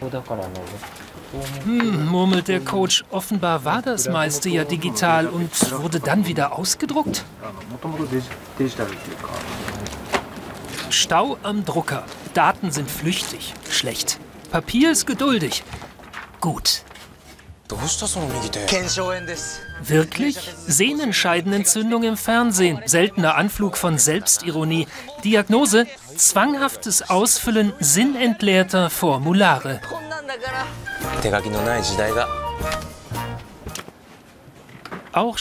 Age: 40-59